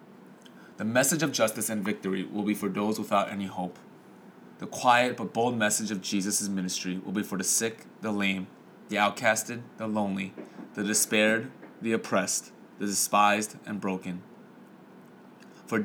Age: 20-39